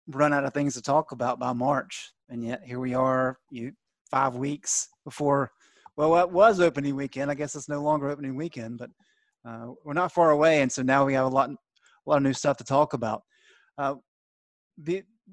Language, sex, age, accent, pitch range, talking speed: English, male, 30-49, American, 120-145 Hz, 210 wpm